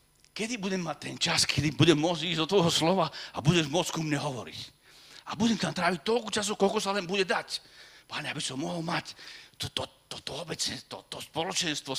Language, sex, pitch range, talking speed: Slovak, male, 145-195 Hz, 205 wpm